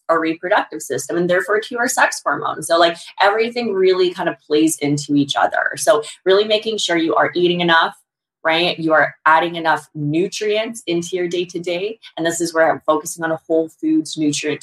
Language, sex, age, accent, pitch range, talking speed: English, female, 20-39, American, 155-195 Hz, 195 wpm